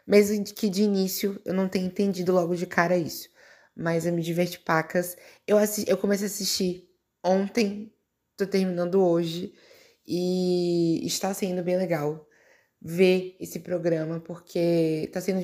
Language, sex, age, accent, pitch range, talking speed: Portuguese, female, 20-39, Brazilian, 170-190 Hz, 145 wpm